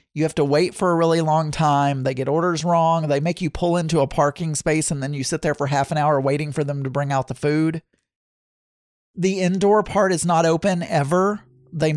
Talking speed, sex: 230 wpm, male